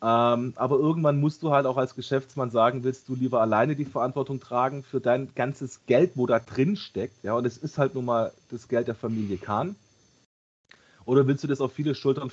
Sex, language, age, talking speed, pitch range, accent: male, German, 30-49, 215 wpm, 105-125 Hz, German